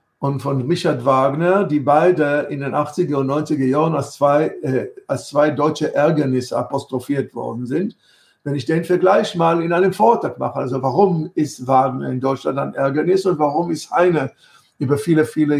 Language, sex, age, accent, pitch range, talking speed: German, male, 60-79, German, 135-160 Hz, 175 wpm